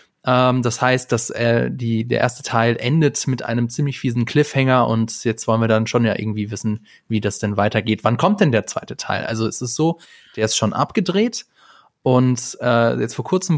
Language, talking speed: German, 200 wpm